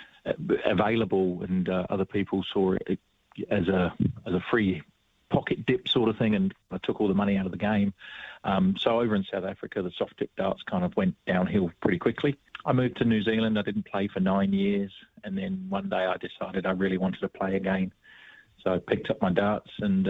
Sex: male